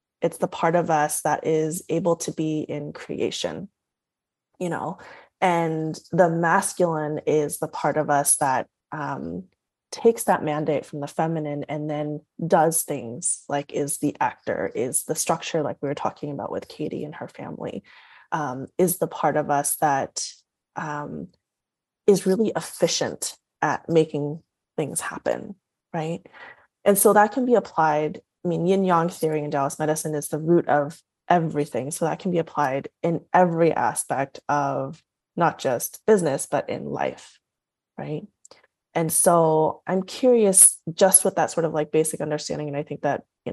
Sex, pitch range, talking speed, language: female, 150-175 Hz, 165 wpm, English